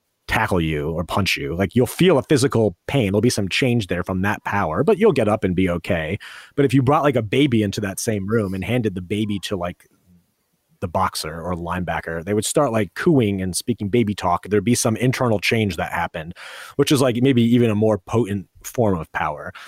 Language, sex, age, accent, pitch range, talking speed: English, male, 30-49, American, 90-125 Hz, 225 wpm